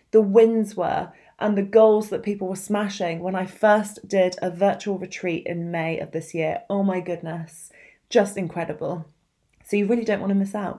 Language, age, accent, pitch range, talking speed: English, 30-49, British, 180-225 Hz, 190 wpm